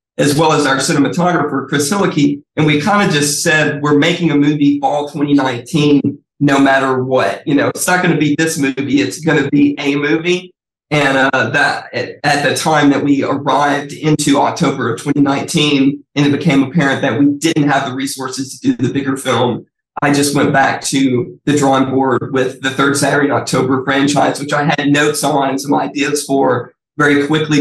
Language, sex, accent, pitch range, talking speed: English, male, American, 135-145 Hz, 200 wpm